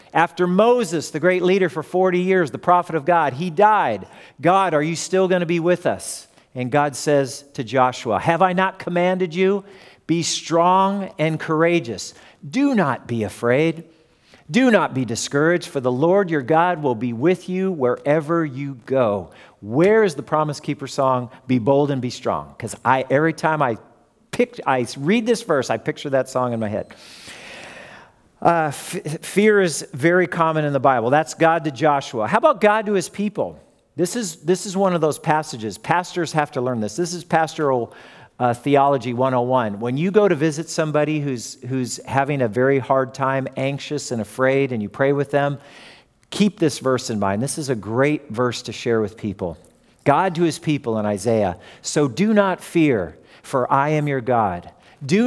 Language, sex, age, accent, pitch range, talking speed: English, male, 50-69, American, 130-175 Hz, 190 wpm